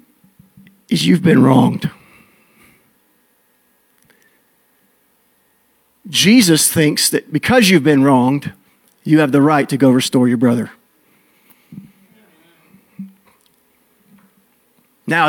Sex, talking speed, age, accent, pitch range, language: male, 80 wpm, 40-59, American, 165-230 Hz, English